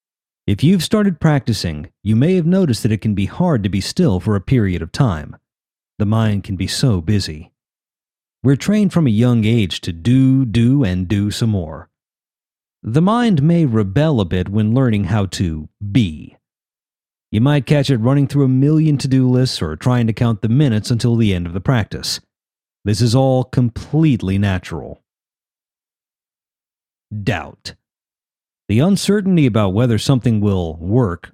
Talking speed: 165 wpm